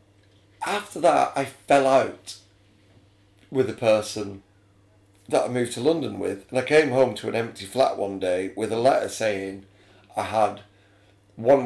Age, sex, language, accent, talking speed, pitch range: 30-49, male, English, British, 160 wpm, 100-120 Hz